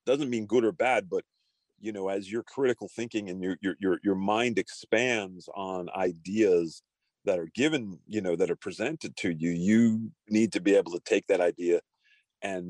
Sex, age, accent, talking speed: male, 40-59, American, 190 wpm